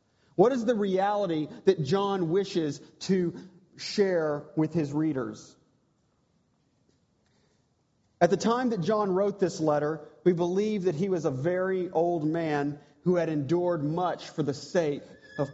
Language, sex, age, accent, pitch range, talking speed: English, male, 40-59, American, 150-190 Hz, 145 wpm